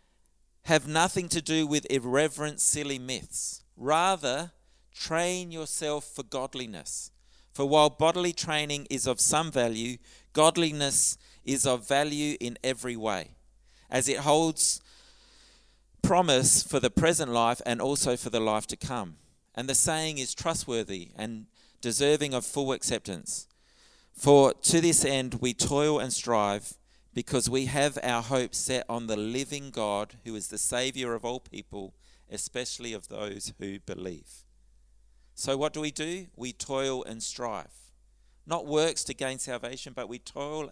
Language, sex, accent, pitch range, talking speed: English, male, Australian, 120-150 Hz, 145 wpm